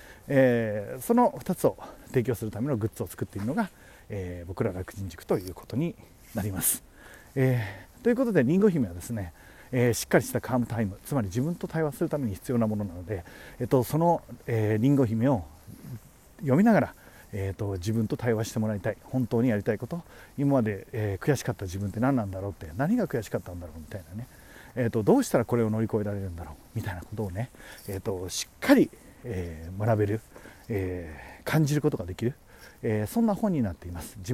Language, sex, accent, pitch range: Japanese, male, native, 100-135 Hz